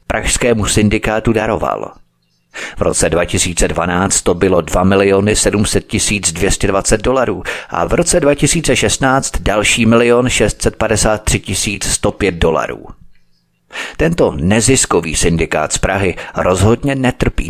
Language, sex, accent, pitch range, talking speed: Czech, male, native, 90-120 Hz, 95 wpm